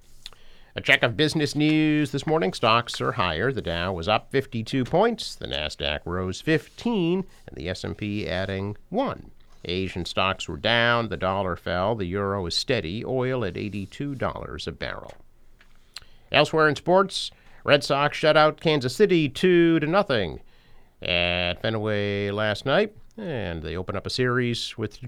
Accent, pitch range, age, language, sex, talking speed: American, 100-150 Hz, 50-69, English, male, 155 wpm